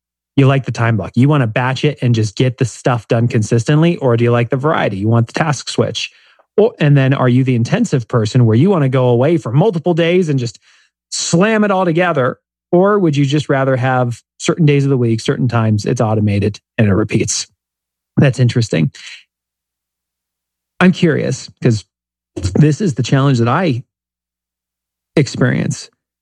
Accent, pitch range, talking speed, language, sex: American, 100-140 Hz, 185 wpm, English, male